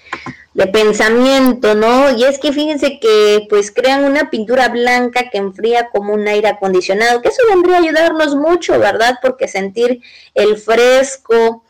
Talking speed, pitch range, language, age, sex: 155 wpm, 195-250 Hz, Spanish, 20-39, female